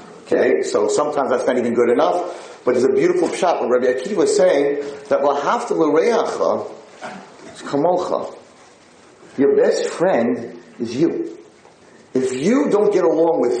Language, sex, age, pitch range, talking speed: English, male, 40-59, 290-420 Hz, 130 wpm